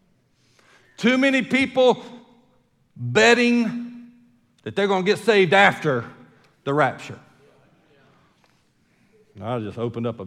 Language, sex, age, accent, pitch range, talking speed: English, male, 50-69, American, 130-210 Hz, 110 wpm